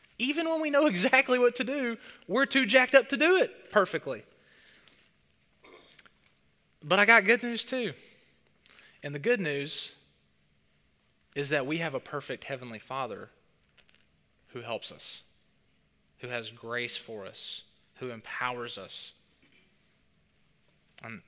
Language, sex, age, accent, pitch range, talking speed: English, male, 20-39, American, 115-185 Hz, 130 wpm